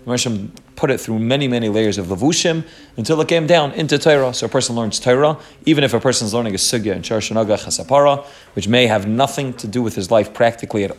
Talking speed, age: 225 wpm, 30-49